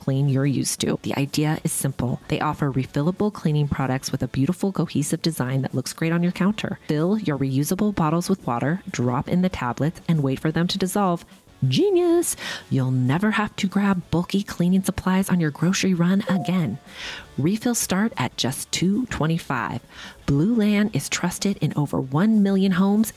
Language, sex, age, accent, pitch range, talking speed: English, female, 30-49, American, 145-200 Hz, 175 wpm